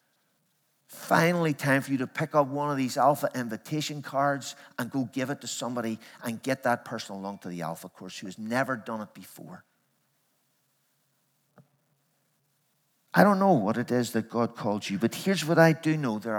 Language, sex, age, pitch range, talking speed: English, male, 50-69, 110-145 Hz, 185 wpm